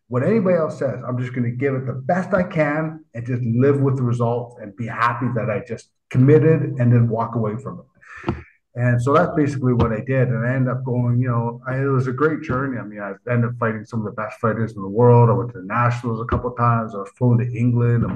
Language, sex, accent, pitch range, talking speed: English, male, American, 115-135 Hz, 265 wpm